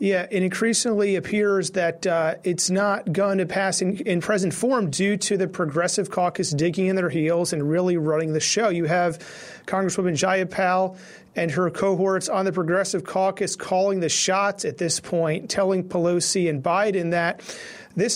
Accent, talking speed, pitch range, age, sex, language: American, 170 wpm, 175-210 Hz, 40-59, male, English